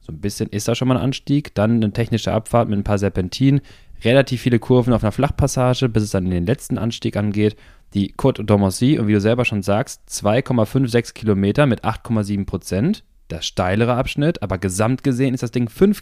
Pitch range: 95-115 Hz